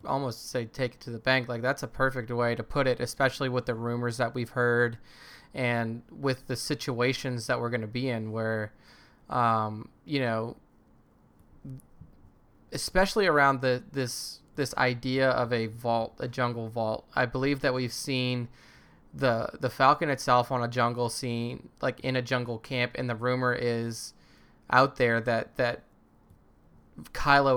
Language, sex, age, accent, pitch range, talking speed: English, male, 20-39, American, 115-130 Hz, 165 wpm